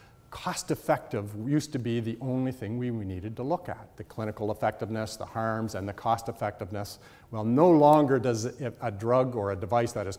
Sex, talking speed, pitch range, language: male, 190 wpm, 105-130 Hz, English